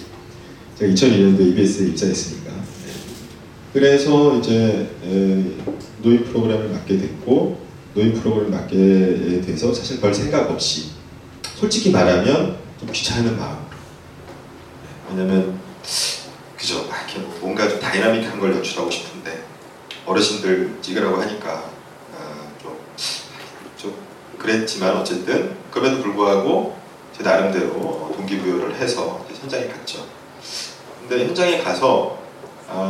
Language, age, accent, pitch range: Korean, 30-49, native, 95-130 Hz